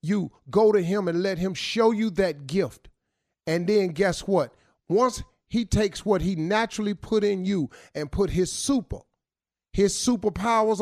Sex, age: male, 40-59